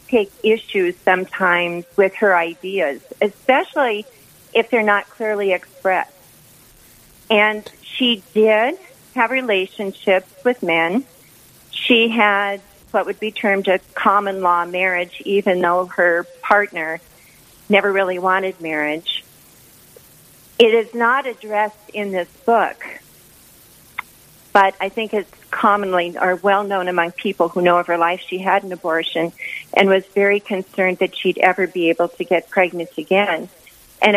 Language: English